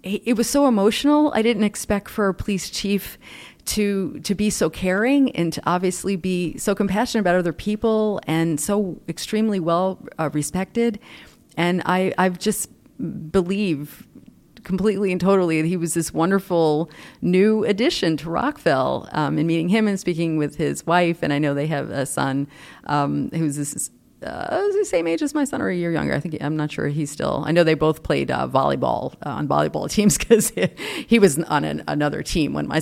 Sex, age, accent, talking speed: female, 40-59, American, 190 wpm